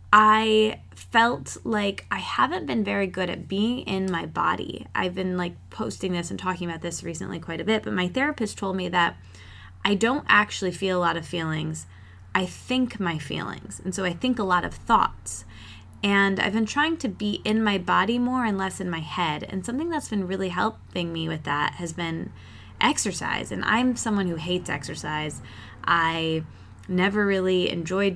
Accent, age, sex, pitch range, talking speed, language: American, 20-39, female, 160-200 Hz, 190 wpm, English